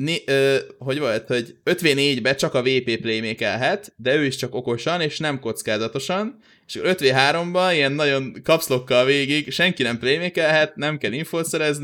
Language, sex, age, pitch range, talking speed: Hungarian, male, 20-39, 130-170 Hz, 145 wpm